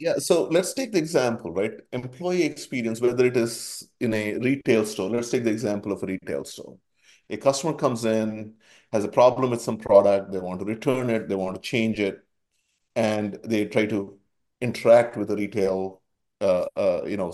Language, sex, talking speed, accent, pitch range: English, male, 195 wpm, Indian, 105-125 Hz